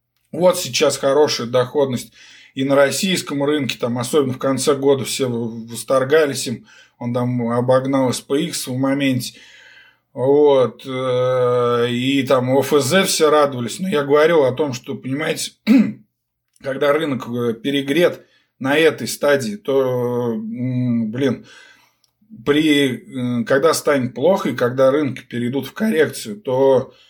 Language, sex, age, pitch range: Russian, male, 20-39, 120-145 Hz